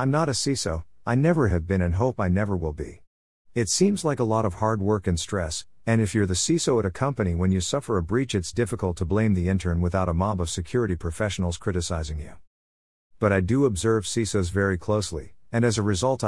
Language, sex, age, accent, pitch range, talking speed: English, male, 50-69, American, 85-110 Hz, 230 wpm